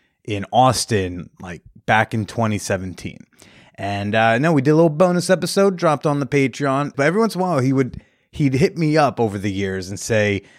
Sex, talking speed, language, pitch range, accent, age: male, 205 wpm, English, 105-140 Hz, American, 30-49